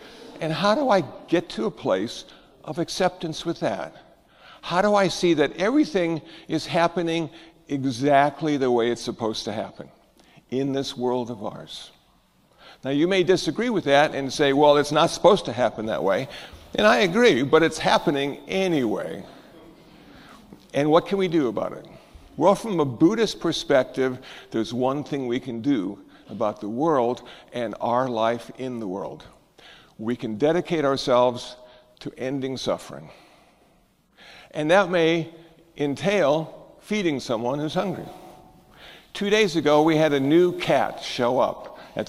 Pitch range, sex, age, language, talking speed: 130-170 Hz, male, 60-79, English, 155 wpm